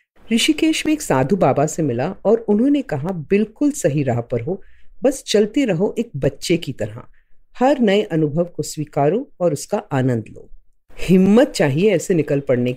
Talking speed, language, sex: 170 wpm, Hindi, female